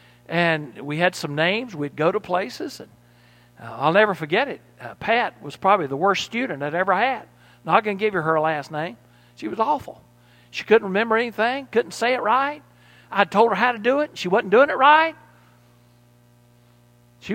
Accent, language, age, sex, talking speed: American, English, 60-79, male, 195 wpm